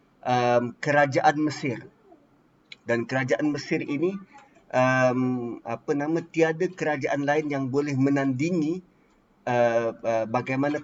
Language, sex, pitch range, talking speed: Malay, male, 135-165 Hz, 105 wpm